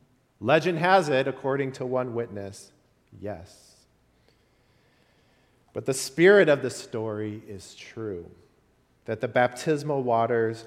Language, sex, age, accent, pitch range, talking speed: English, male, 40-59, American, 110-135 Hz, 110 wpm